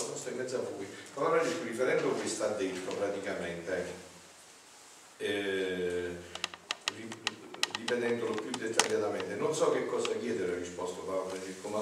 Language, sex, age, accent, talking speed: Italian, male, 50-69, native, 90 wpm